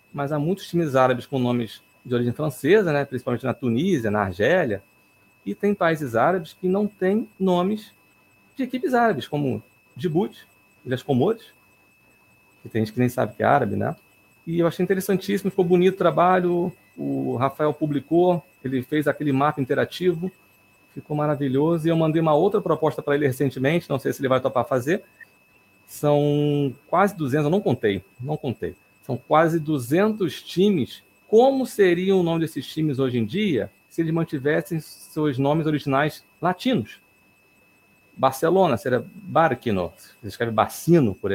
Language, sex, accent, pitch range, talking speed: Portuguese, male, Brazilian, 120-165 Hz, 160 wpm